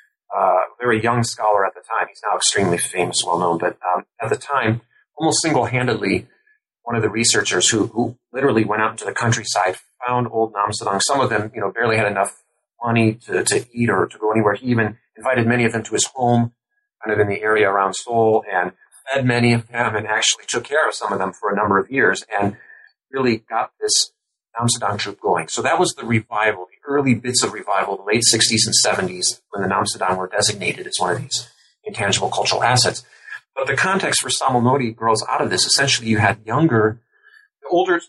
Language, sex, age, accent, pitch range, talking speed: English, male, 30-49, American, 110-130 Hz, 210 wpm